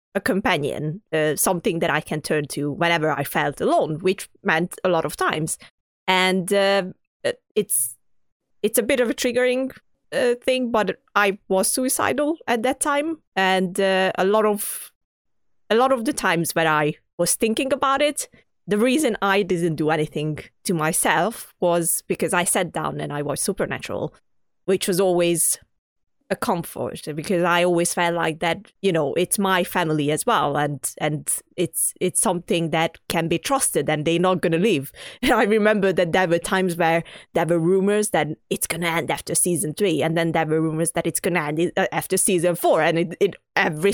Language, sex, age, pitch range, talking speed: English, female, 20-39, 165-215 Hz, 190 wpm